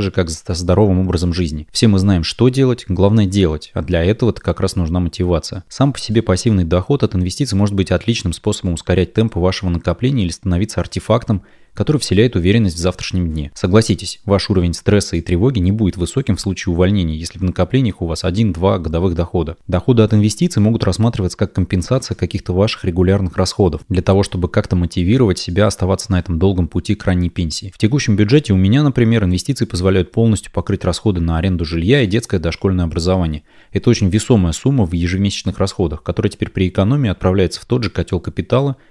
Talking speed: 190 wpm